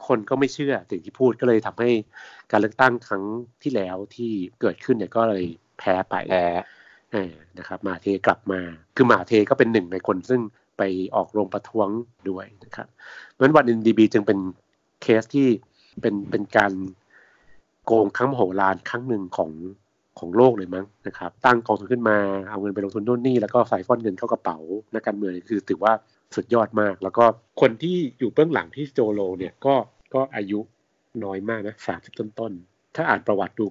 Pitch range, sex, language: 95-120 Hz, male, Thai